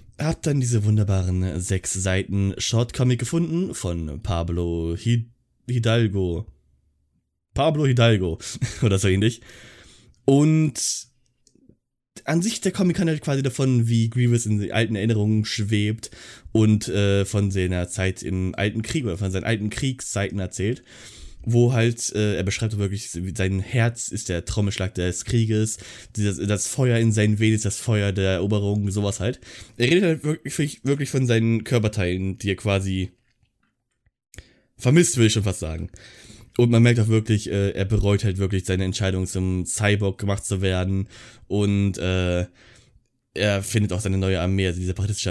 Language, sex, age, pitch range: German, male, 20-39, 95-120 Hz